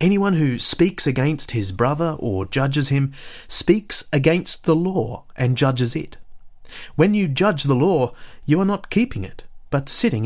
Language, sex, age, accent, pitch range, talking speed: English, male, 30-49, Australian, 110-160 Hz, 165 wpm